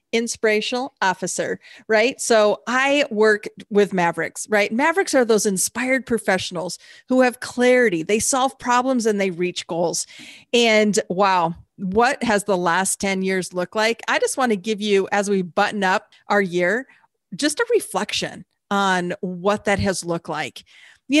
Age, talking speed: 40-59, 160 wpm